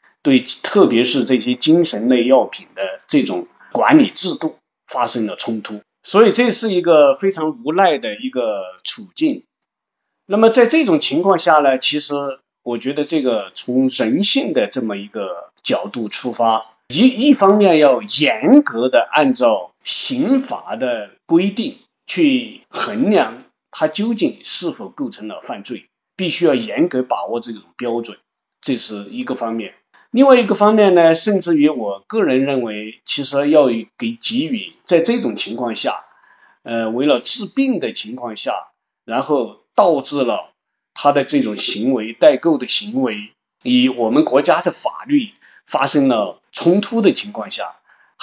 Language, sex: Chinese, male